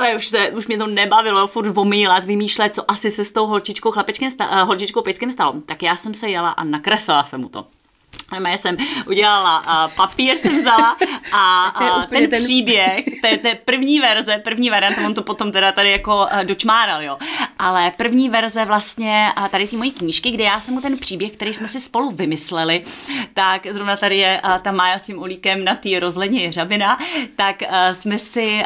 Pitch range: 180-220 Hz